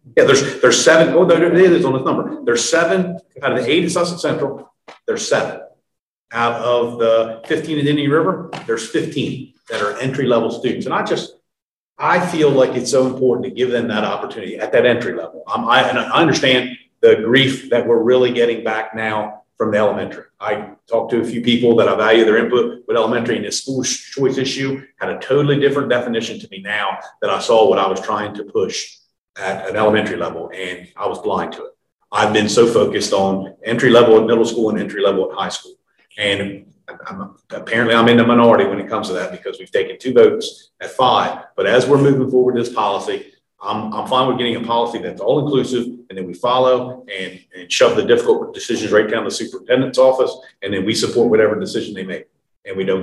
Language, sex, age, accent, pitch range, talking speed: English, male, 50-69, American, 115-160 Hz, 215 wpm